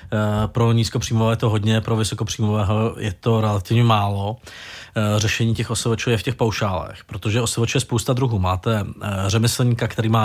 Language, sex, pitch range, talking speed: Czech, male, 105-120 Hz, 160 wpm